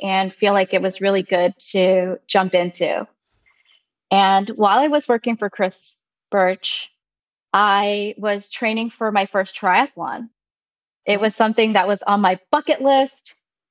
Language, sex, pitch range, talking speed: English, female, 195-245 Hz, 150 wpm